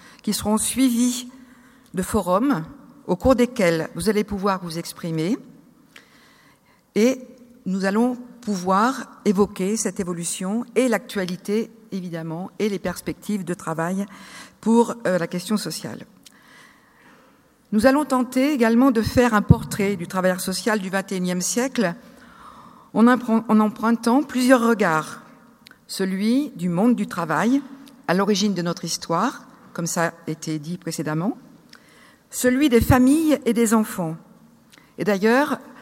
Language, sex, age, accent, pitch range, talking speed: French, female, 50-69, French, 195-250 Hz, 125 wpm